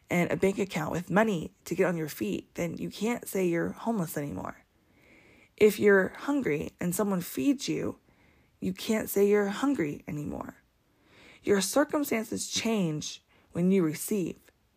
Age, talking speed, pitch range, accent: 20-39, 150 wpm, 160-210 Hz, American